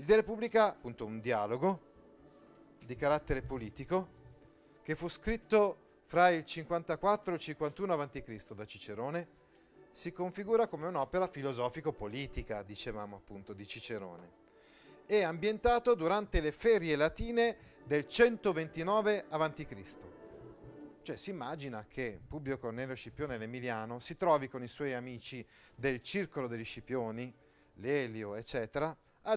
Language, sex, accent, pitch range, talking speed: Italian, male, native, 110-160 Hz, 125 wpm